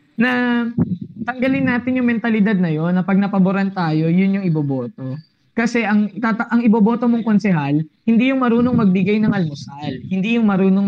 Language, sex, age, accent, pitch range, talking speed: Filipino, female, 20-39, native, 155-205 Hz, 165 wpm